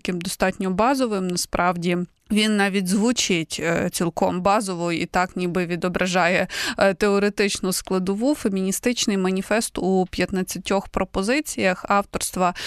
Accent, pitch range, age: native, 175-200 Hz, 20-39